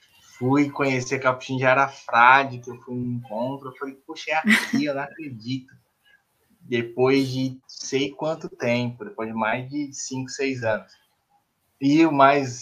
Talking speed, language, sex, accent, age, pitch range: 155 wpm, Portuguese, male, Brazilian, 20-39, 125-180 Hz